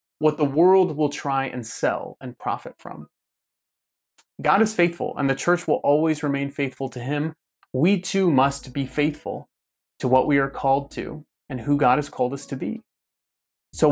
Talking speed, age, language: 180 wpm, 30-49, English